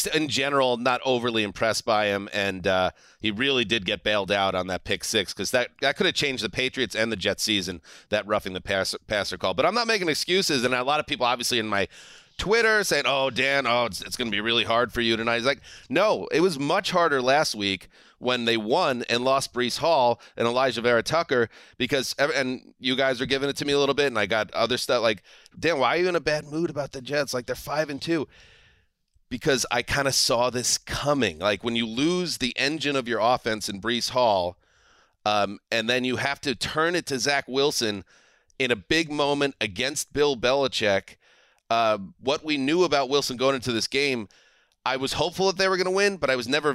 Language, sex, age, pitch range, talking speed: English, male, 30-49, 110-140 Hz, 230 wpm